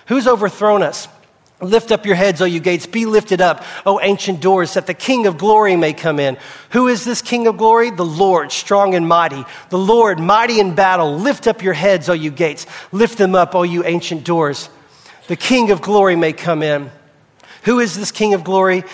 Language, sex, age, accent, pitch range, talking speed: English, male, 40-59, American, 160-210 Hz, 210 wpm